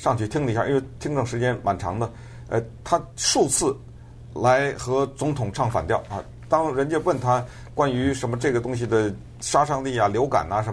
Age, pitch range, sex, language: 50-69, 115-135 Hz, male, Chinese